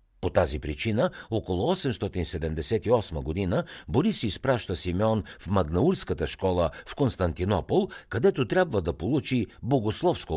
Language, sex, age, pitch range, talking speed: Bulgarian, male, 60-79, 85-120 Hz, 110 wpm